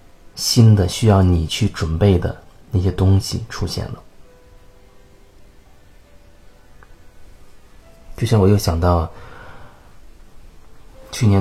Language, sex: Chinese, male